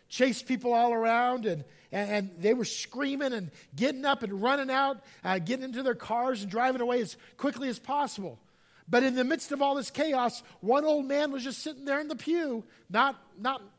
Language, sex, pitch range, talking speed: English, male, 185-265 Hz, 205 wpm